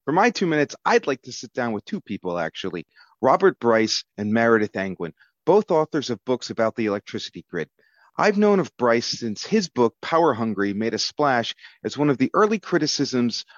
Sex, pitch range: male, 115-175 Hz